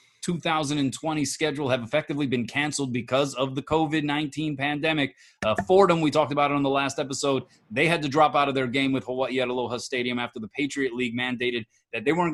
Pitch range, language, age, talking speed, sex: 130-165 Hz, English, 30-49, 205 wpm, male